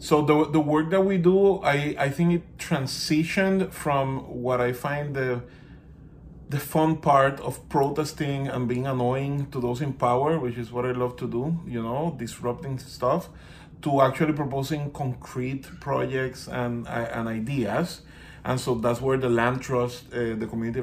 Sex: male